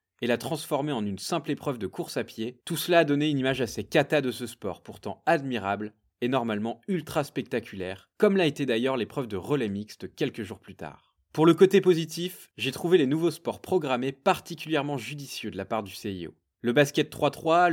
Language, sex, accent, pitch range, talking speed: French, male, French, 115-160 Hz, 205 wpm